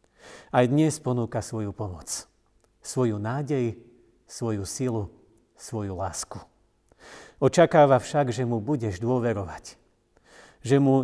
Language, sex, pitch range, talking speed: Slovak, male, 105-135 Hz, 105 wpm